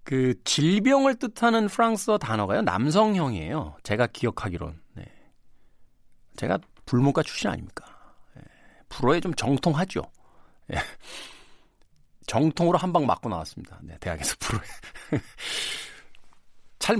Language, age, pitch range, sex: Korean, 40-59, 105-175 Hz, male